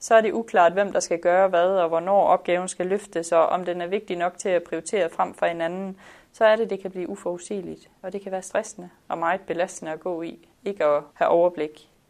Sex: female